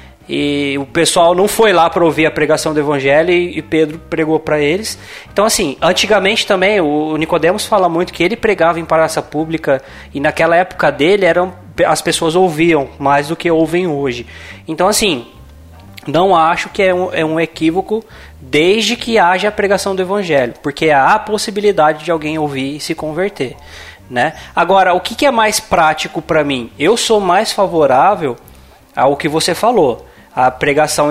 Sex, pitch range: male, 150-195 Hz